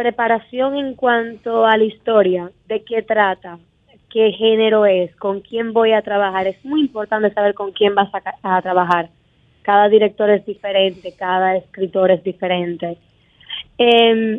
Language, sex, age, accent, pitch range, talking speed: Spanish, female, 20-39, American, 200-245 Hz, 150 wpm